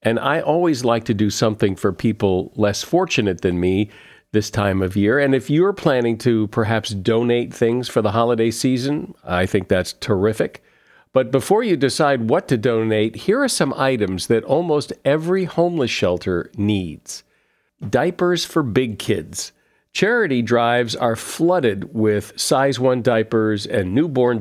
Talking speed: 155 wpm